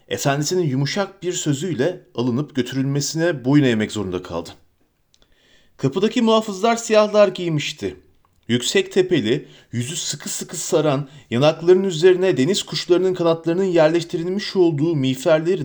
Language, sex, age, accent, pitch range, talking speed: Turkish, male, 40-59, native, 135-195 Hz, 105 wpm